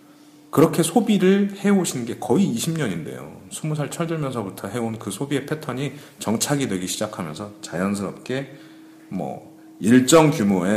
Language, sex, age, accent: Korean, male, 40-59, native